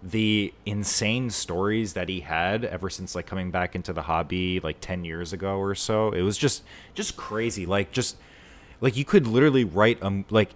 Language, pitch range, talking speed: English, 90-105 Hz, 195 wpm